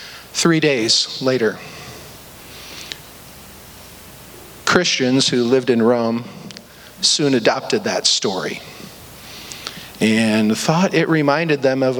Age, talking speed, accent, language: 50-69, 90 wpm, American, English